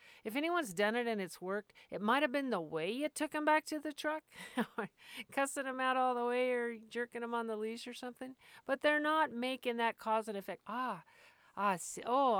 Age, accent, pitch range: 50-69, American, 190-245 Hz